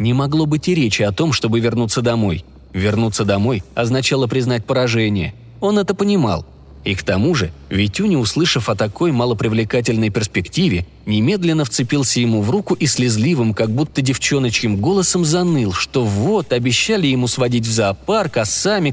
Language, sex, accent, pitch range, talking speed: Russian, male, native, 110-160 Hz, 155 wpm